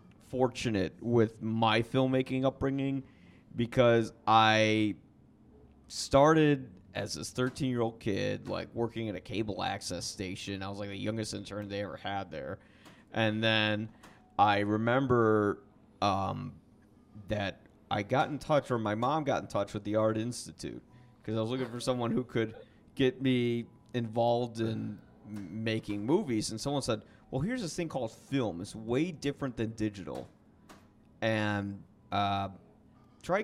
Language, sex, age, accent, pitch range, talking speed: English, male, 30-49, American, 105-125 Hz, 150 wpm